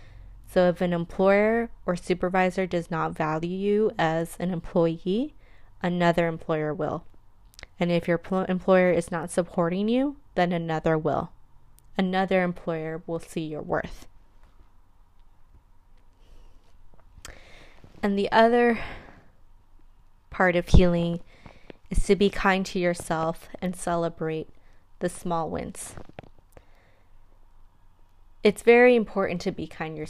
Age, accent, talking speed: 20-39, American, 110 wpm